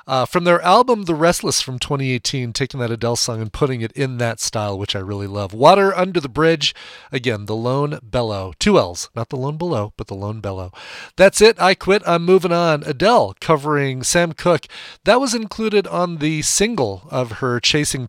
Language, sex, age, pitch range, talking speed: English, male, 40-59, 115-160 Hz, 200 wpm